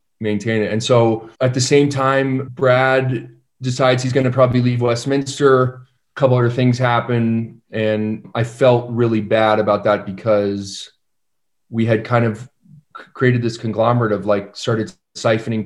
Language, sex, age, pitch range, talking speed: English, male, 30-49, 110-130 Hz, 155 wpm